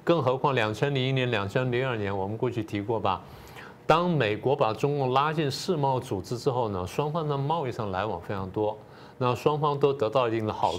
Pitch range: 110-145 Hz